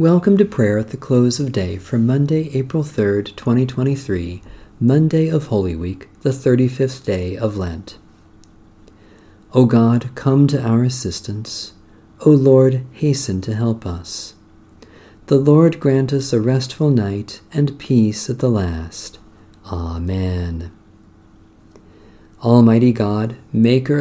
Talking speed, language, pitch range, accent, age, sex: 125 wpm, English, 100-135 Hz, American, 50-69, male